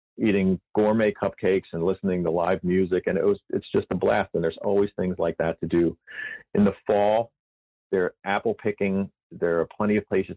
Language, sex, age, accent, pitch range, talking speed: English, male, 40-59, American, 80-100 Hz, 195 wpm